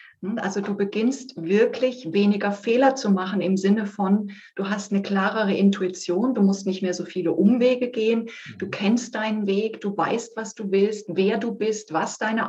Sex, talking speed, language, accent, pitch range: female, 185 wpm, German, German, 190-220 Hz